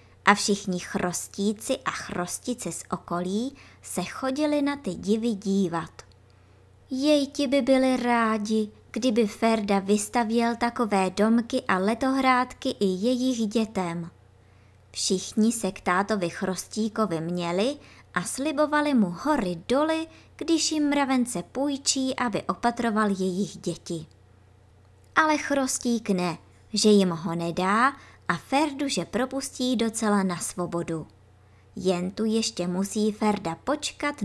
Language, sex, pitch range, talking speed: Czech, male, 170-240 Hz, 115 wpm